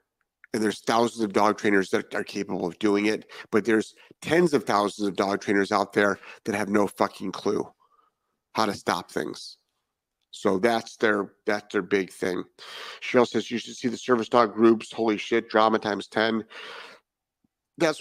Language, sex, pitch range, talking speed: English, male, 110-135 Hz, 175 wpm